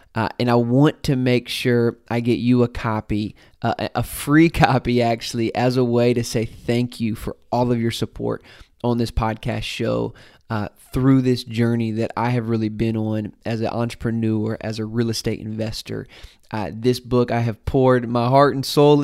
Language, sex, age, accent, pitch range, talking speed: English, male, 20-39, American, 115-125 Hz, 190 wpm